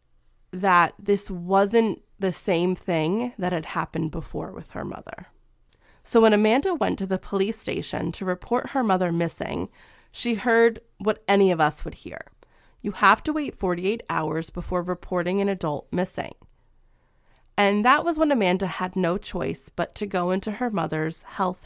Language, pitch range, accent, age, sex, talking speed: English, 170-210 Hz, American, 20-39, female, 165 wpm